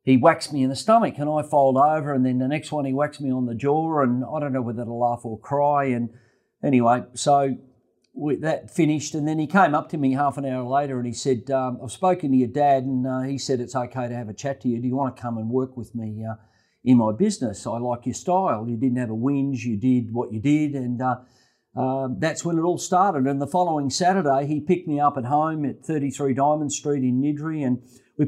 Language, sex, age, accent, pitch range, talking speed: English, male, 50-69, Australian, 125-145 Hz, 255 wpm